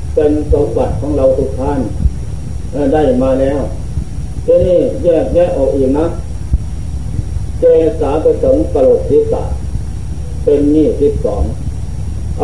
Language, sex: Thai, male